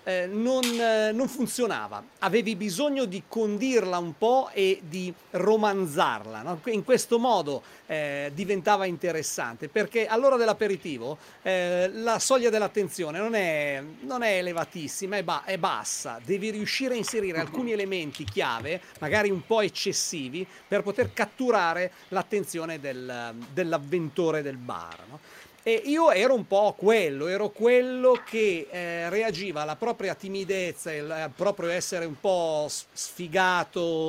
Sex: male